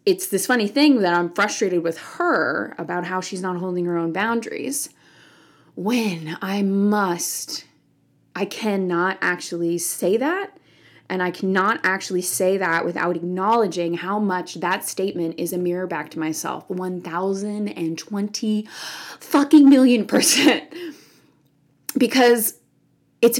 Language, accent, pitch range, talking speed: English, American, 170-220 Hz, 125 wpm